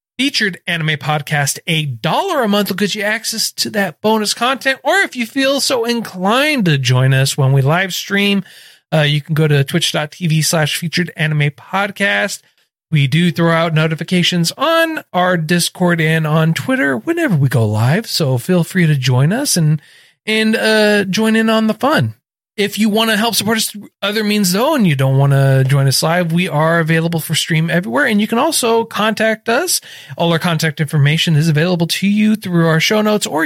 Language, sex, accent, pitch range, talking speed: English, male, American, 160-220 Hz, 200 wpm